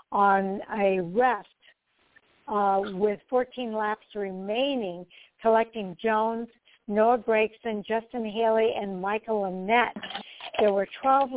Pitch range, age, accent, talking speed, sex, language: 200-235 Hz, 60-79, American, 105 wpm, female, English